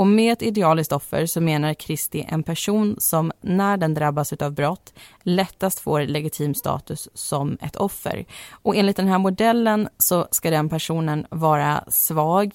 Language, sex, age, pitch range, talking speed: Swedish, female, 30-49, 155-195 Hz, 165 wpm